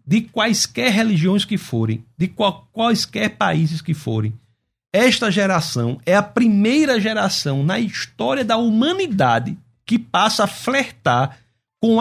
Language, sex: Portuguese, male